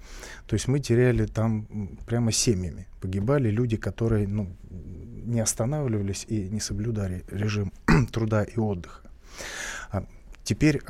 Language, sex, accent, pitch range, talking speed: Russian, male, native, 100-120 Hz, 120 wpm